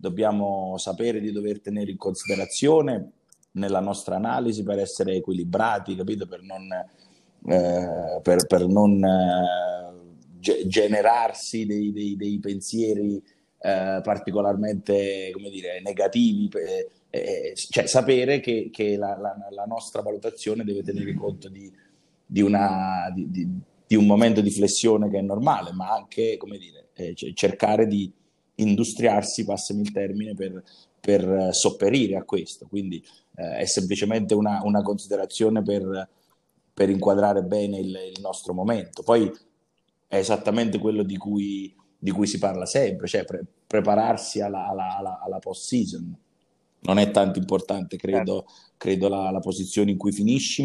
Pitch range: 95-105 Hz